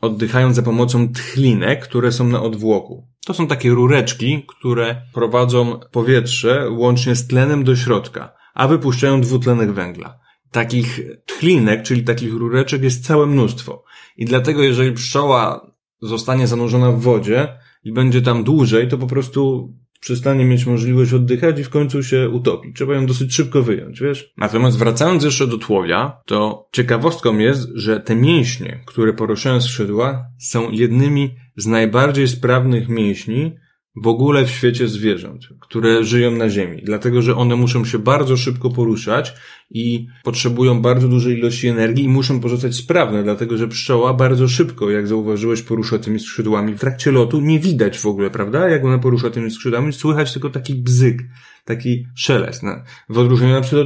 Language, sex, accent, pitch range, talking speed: Polish, male, native, 115-130 Hz, 160 wpm